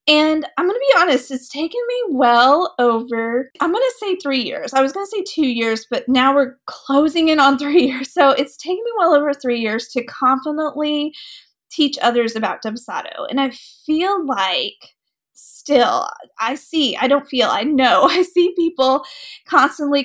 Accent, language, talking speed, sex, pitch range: American, English, 185 wpm, female, 250-315 Hz